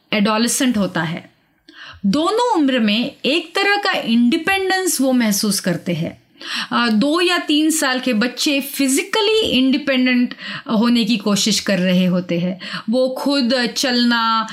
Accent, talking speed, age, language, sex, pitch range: native, 130 wpm, 30-49, Hindi, female, 205-285 Hz